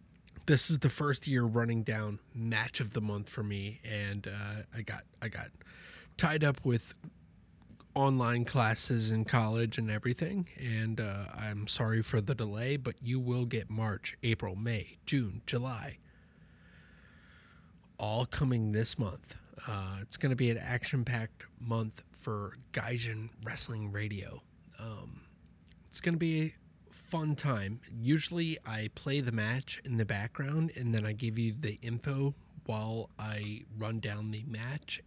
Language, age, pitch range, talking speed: English, 30-49, 105-125 Hz, 150 wpm